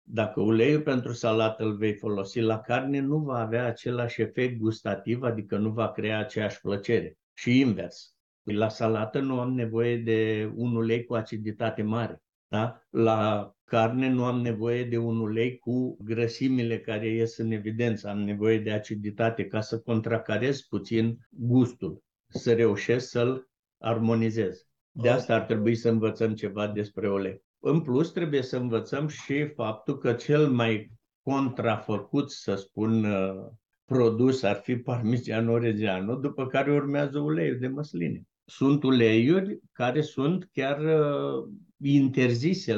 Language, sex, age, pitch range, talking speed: Romanian, male, 60-79, 110-125 Hz, 140 wpm